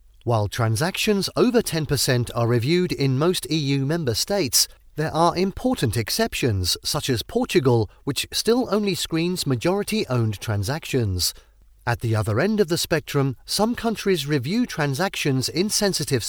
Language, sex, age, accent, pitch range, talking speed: English, male, 40-59, British, 120-185 Hz, 135 wpm